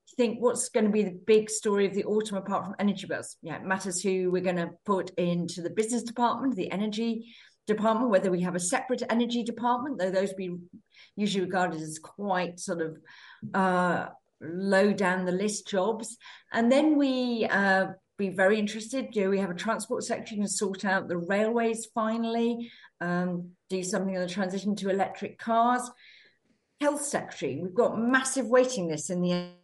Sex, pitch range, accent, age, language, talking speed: female, 180-230 Hz, British, 40-59, English, 180 wpm